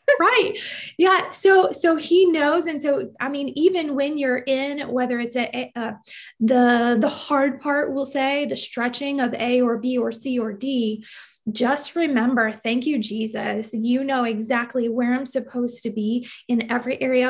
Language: English